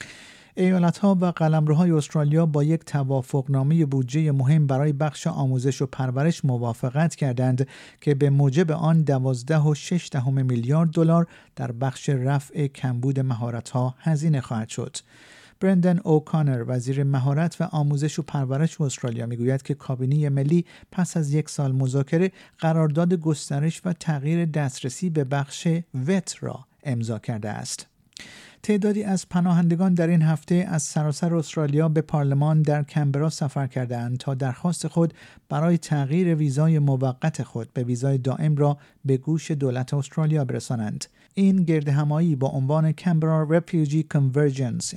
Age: 50-69